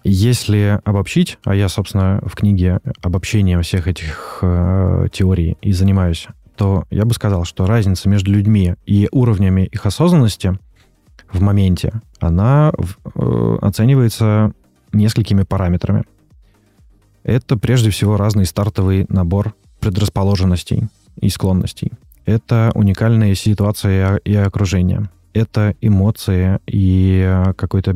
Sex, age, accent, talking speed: male, 20-39, native, 110 wpm